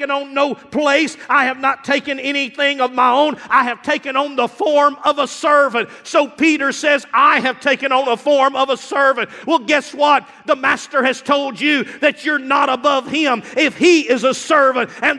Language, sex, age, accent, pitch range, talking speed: English, male, 40-59, American, 260-320 Hz, 200 wpm